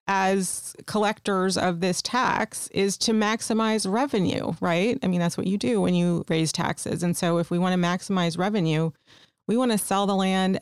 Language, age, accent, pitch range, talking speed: English, 30-49, American, 165-190 Hz, 190 wpm